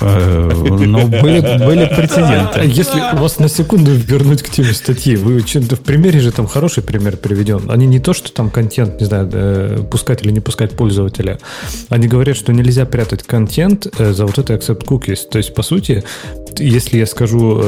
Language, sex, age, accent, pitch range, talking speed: Russian, male, 30-49, native, 105-135 Hz, 175 wpm